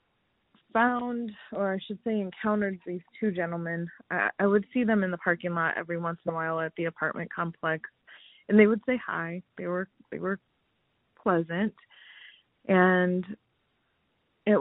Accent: American